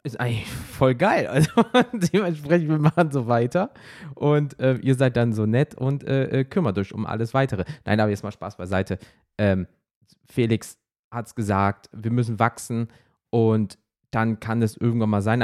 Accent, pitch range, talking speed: German, 110-135 Hz, 175 wpm